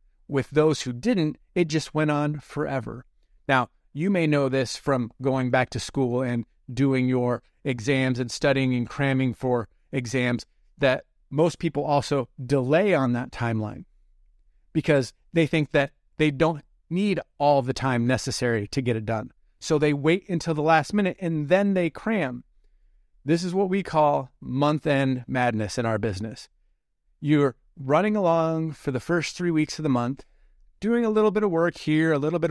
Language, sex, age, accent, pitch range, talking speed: English, male, 30-49, American, 130-170 Hz, 175 wpm